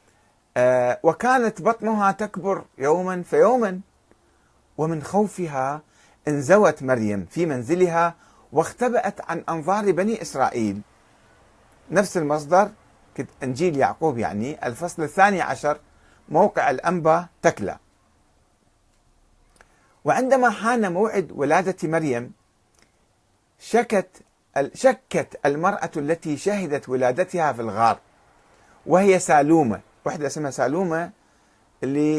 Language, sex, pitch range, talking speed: Arabic, male, 125-180 Hz, 90 wpm